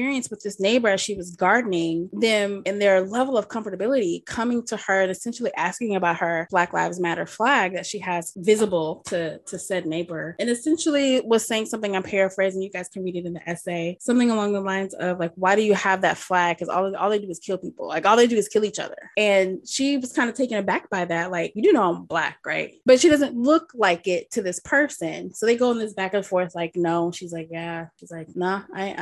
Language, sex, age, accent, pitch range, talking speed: English, female, 20-39, American, 180-230 Hz, 245 wpm